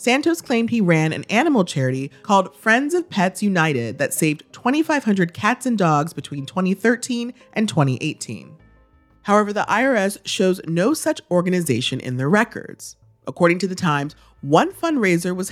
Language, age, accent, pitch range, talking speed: English, 30-49, American, 145-220 Hz, 150 wpm